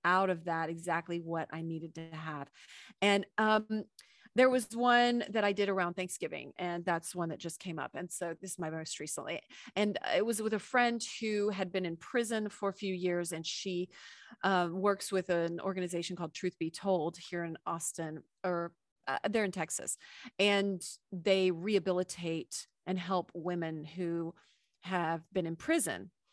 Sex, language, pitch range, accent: female, English, 170-200 Hz, American